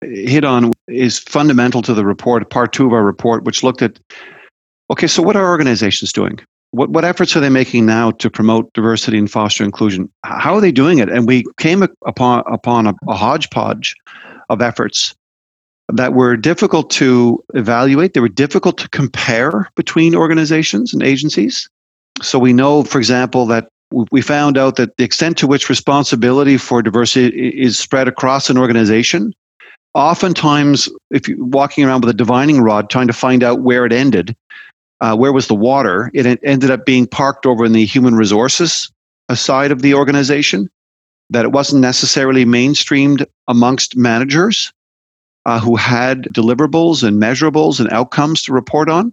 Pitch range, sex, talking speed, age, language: 115-140 Hz, male, 170 wpm, 50-69, English